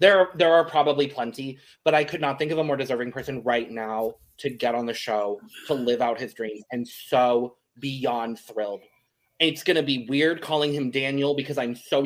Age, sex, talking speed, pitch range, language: 20-39, male, 210 wpm, 125-155 Hz, English